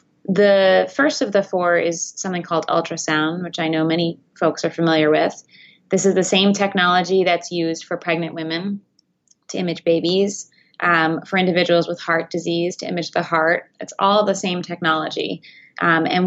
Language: English